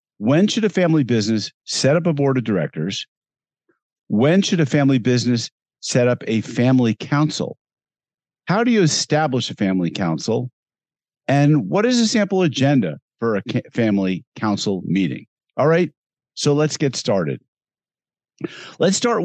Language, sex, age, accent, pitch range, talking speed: English, male, 50-69, American, 115-160 Hz, 145 wpm